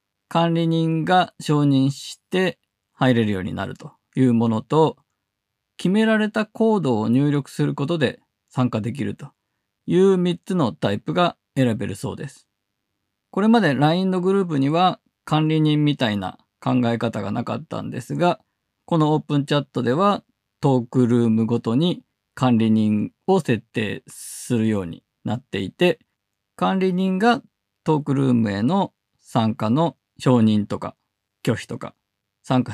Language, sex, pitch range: Japanese, male, 115-175 Hz